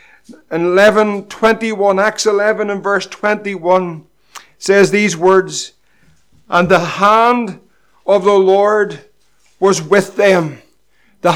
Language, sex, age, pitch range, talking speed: English, male, 60-79, 180-210 Hz, 95 wpm